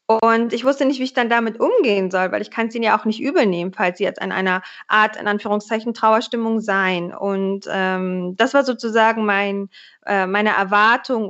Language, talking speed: German, 200 wpm